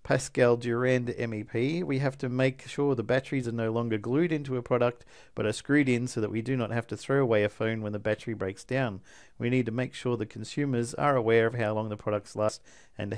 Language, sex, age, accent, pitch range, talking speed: English, male, 50-69, Australian, 110-130 Hz, 240 wpm